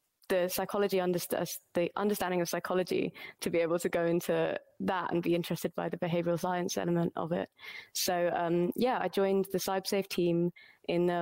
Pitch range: 175-190 Hz